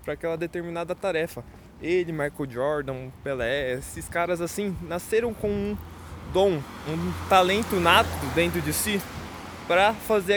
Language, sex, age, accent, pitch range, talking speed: English, male, 20-39, Brazilian, 155-195 Hz, 135 wpm